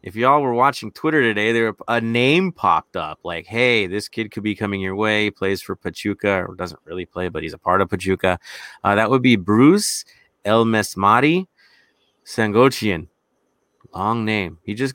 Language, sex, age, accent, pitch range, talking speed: English, male, 30-49, American, 95-120 Hz, 180 wpm